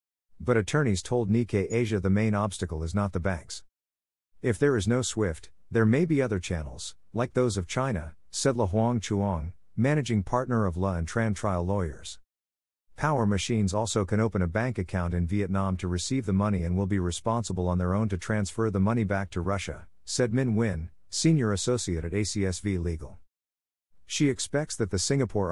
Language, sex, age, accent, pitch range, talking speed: English, male, 50-69, American, 90-115 Hz, 185 wpm